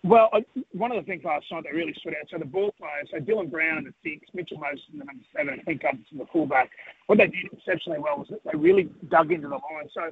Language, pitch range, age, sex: English, 155-220 Hz, 40-59, male